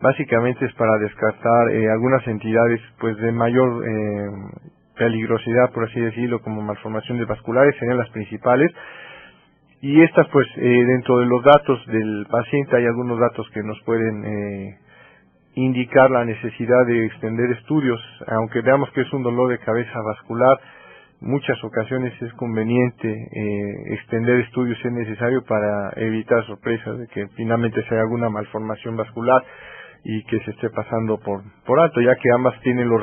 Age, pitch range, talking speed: 40-59, 110-125 Hz, 160 wpm